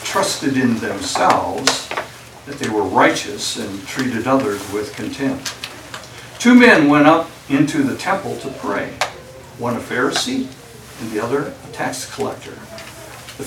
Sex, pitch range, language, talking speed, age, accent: male, 120-140 Hz, English, 140 wpm, 60-79, American